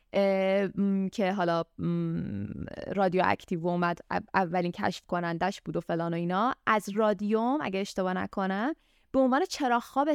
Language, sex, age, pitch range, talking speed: Persian, female, 20-39, 185-270 Hz, 150 wpm